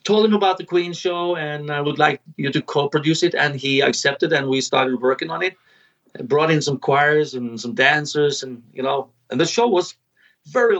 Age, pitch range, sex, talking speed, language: 40-59, 150-185 Hz, male, 215 wpm, English